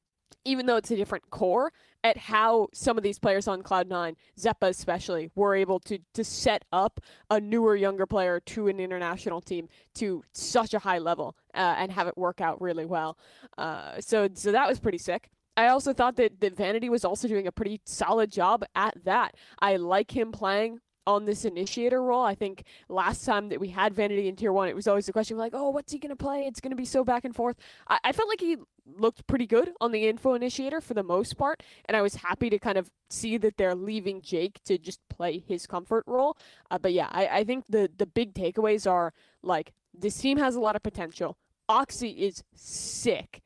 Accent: American